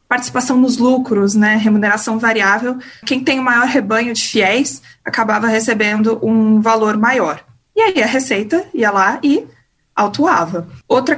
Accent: Brazilian